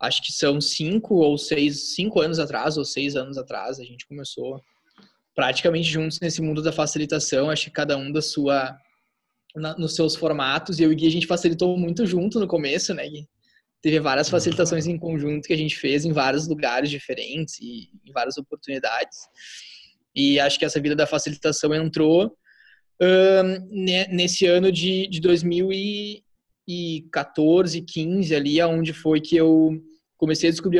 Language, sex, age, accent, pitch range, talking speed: Portuguese, male, 20-39, Brazilian, 145-170 Hz, 165 wpm